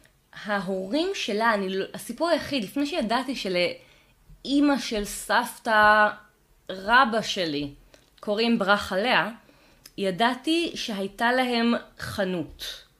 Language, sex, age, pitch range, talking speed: Hebrew, female, 20-39, 190-255 Hz, 90 wpm